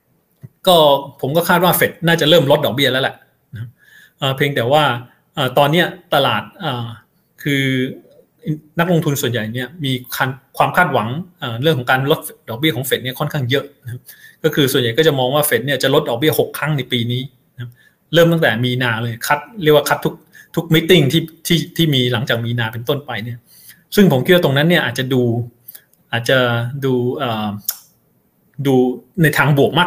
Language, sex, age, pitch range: Thai, male, 20-39, 120-160 Hz